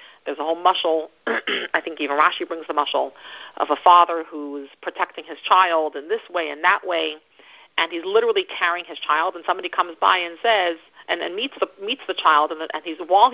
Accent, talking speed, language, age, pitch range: American, 205 wpm, English, 50-69, 165-205 Hz